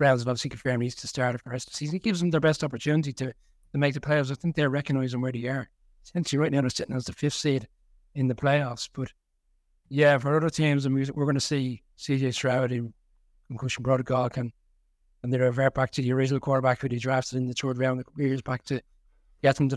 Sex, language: male, English